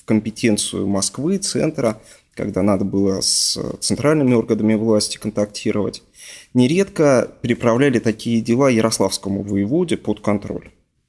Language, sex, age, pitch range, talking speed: Russian, male, 20-39, 105-120 Hz, 110 wpm